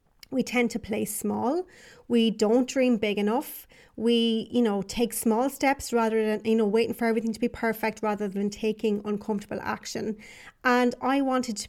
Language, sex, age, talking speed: English, female, 30-49, 180 wpm